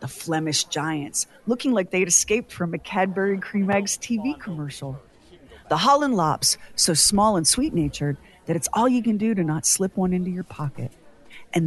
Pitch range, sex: 150-195 Hz, female